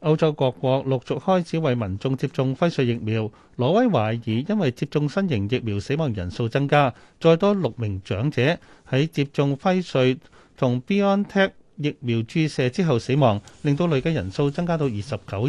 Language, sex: Chinese, male